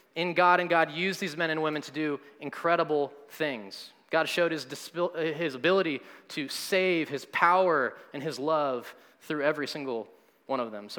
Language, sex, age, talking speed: English, male, 20-39, 170 wpm